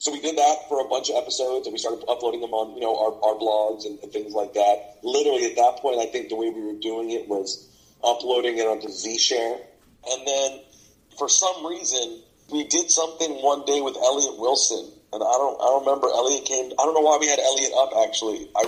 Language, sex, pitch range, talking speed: English, male, 115-140 Hz, 230 wpm